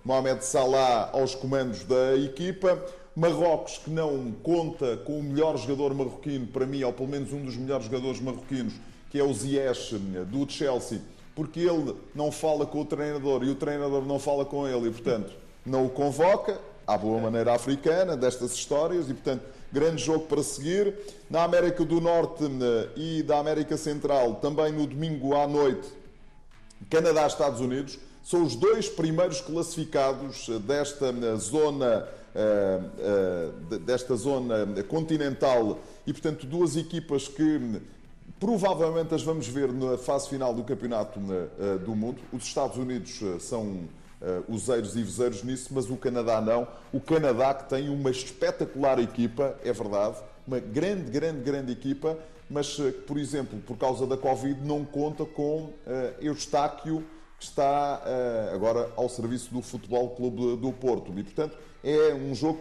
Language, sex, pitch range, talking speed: Portuguese, male, 125-155 Hz, 150 wpm